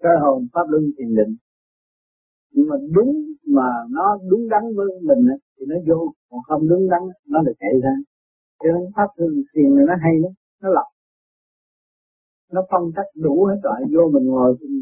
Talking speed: 180 wpm